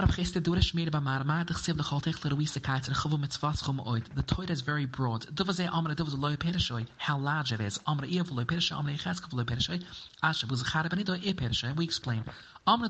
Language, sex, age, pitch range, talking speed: English, male, 30-49, 130-170 Hz, 90 wpm